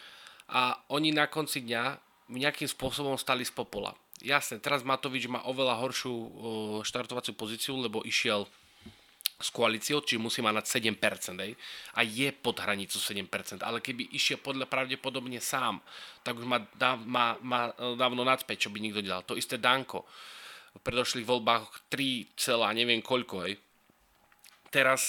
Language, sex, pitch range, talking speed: Slovak, male, 115-130 Hz, 140 wpm